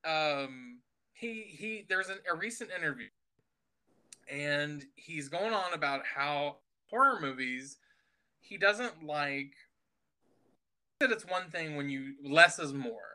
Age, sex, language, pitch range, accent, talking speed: 20-39, male, English, 135-190 Hz, American, 130 wpm